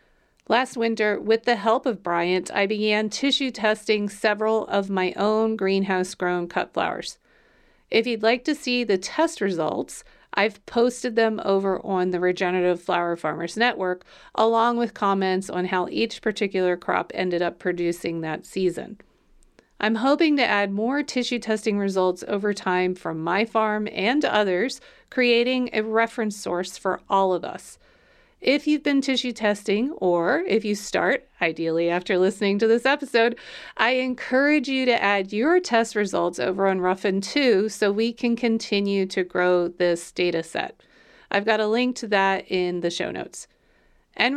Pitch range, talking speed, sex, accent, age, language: 185-235 Hz, 160 wpm, female, American, 40-59, English